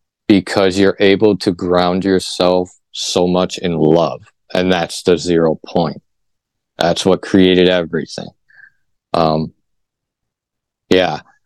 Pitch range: 90-105 Hz